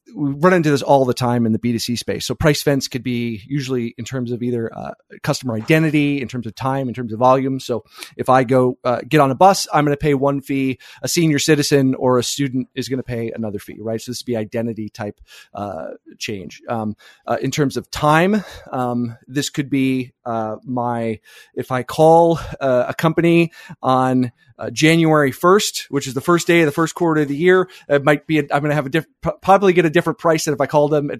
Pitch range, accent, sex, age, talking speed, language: 120-145 Hz, American, male, 30-49, 235 wpm, English